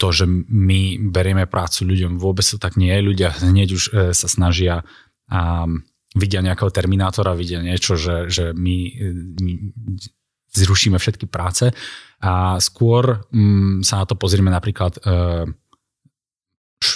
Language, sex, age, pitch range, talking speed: Slovak, male, 30-49, 90-100 Hz, 145 wpm